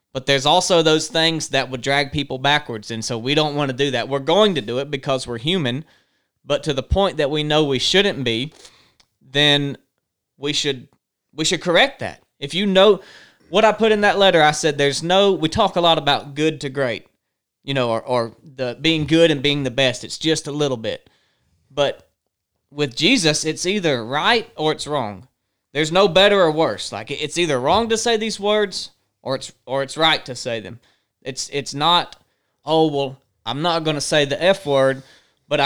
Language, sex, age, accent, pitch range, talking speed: English, male, 30-49, American, 135-170 Hz, 210 wpm